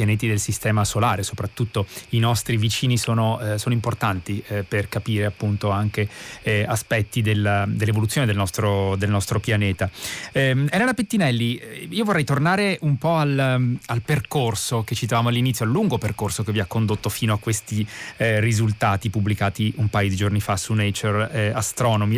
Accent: native